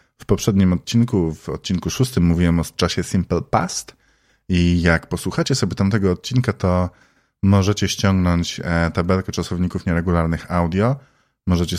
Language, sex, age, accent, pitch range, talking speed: Polish, male, 20-39, native, 85-100 Hz, 125 wpm